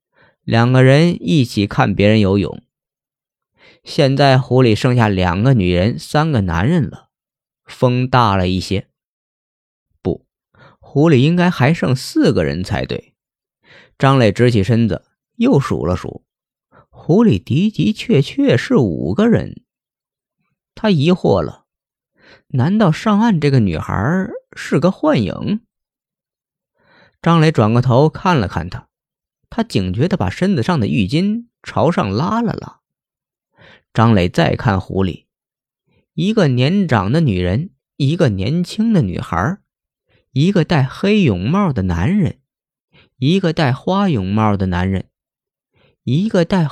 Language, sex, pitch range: Chinese, male, 105-170 Hz